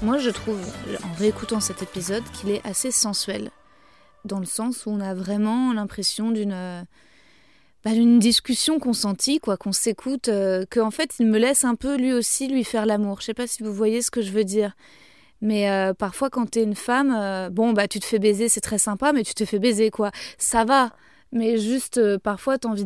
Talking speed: 225 wpm